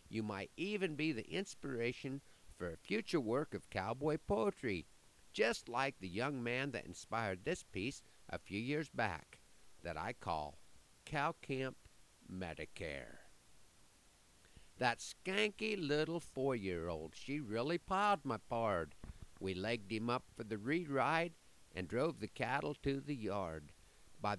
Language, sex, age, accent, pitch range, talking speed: English, male, 50-69, American, 95-150 Hz, 140 wpm